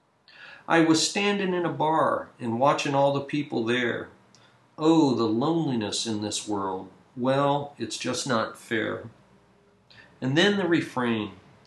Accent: American